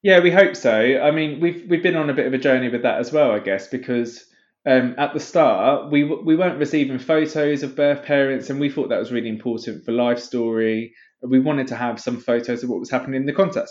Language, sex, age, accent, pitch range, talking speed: English, male, 20-39, British, 115-150 Hz, 255 wpm